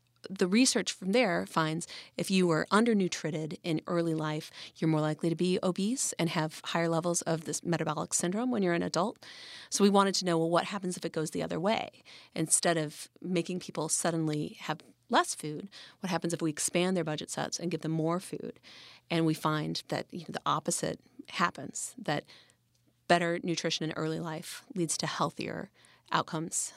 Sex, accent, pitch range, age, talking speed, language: female, American, 160-195 Hz, 30-49, 190 wpm, English